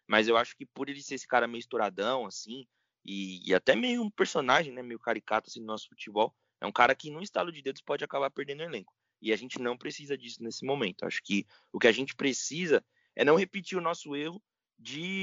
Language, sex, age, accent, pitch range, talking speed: Portuguese, male, 20-39, Brazilian, 110-160 Hz, 235 wpm